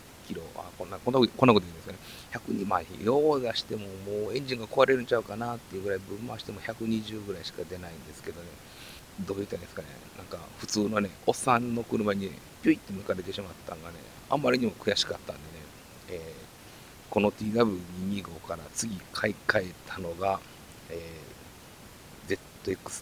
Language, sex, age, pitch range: Japanese, male, 40-59, 90-115 Hz